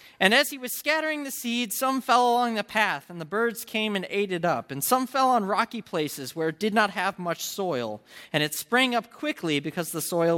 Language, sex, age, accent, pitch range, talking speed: English, male, 20-39, American, 170-240 Hz, 235 wpm